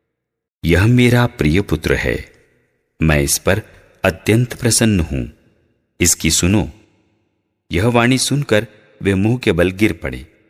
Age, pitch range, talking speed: 50-69, 85-115 Hz, 125 wpm